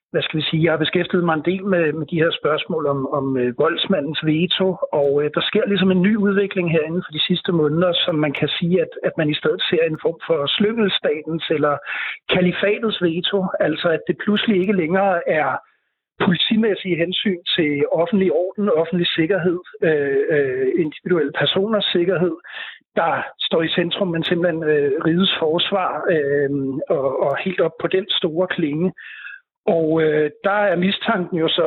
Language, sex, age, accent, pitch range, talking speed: Danish, male, 60-79, native, 155-200 Hz, 150 wpm